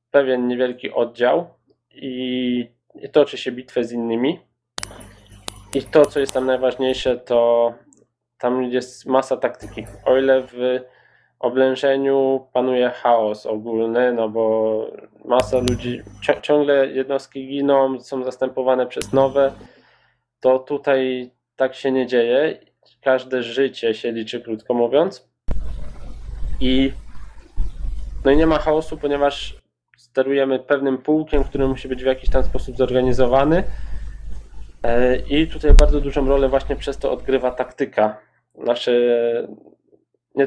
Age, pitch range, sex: 20-39, 120-135 Hz, male